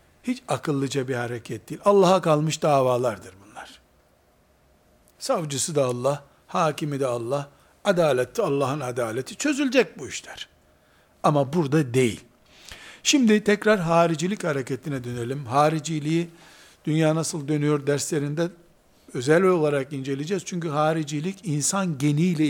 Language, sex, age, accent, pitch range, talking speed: Turkish, male, 60-79, native, 140-175 Hz, 110 wpm